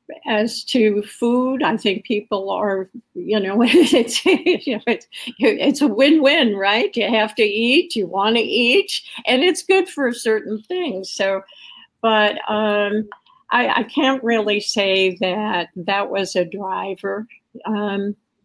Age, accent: 50-69, American